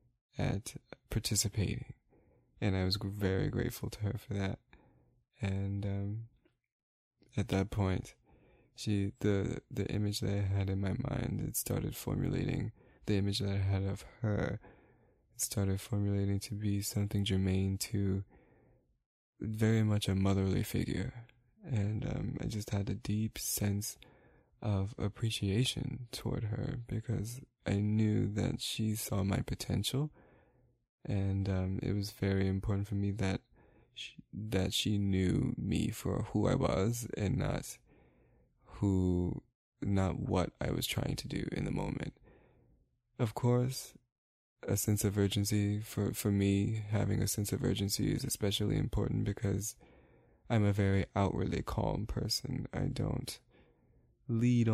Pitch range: 100-120 Hz